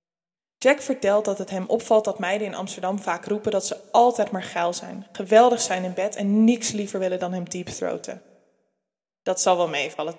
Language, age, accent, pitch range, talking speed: Dutch, 20-39, Dutch, 180-225 Hz, 195 wpm